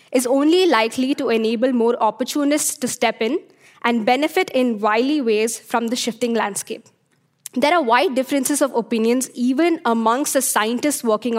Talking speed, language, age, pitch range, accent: 160 wpm, English, 20-39, 230-285 Hz, Indian